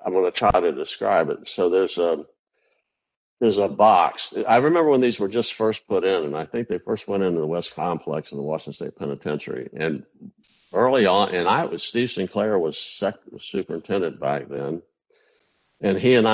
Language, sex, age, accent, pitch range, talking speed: English, male, 60-79, American, 85-115 Hz, 200 wpm